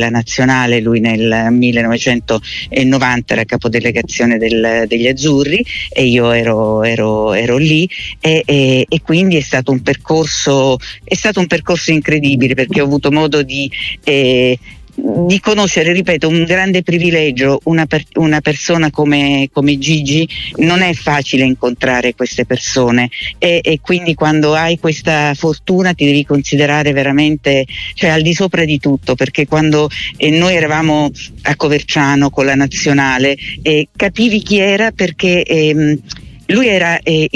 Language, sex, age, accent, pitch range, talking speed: Italian, female, 50-69, native, 135-165 Hz, 145 wpm